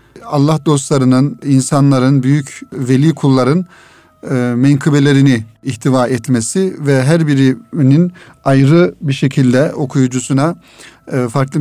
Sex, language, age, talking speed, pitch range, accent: male, Turkish, 40-59, 90 wpm, 130-165 Hz, native